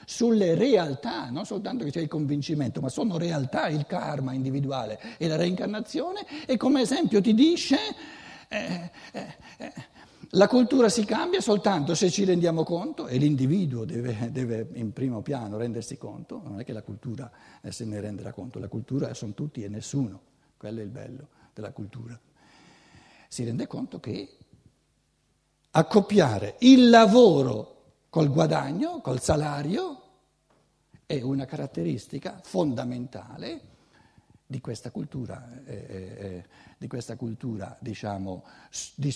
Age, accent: 60-79, native